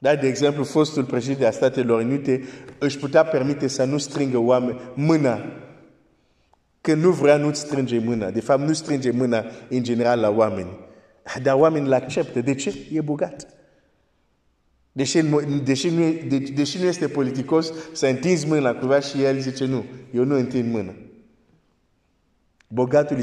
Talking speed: 145 wpm